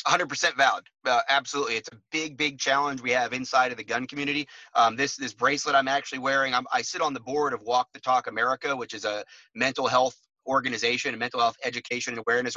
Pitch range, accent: 120-140 Hz, American